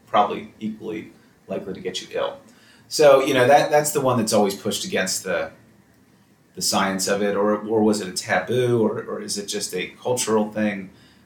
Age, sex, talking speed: 30-49, male, 195 wpm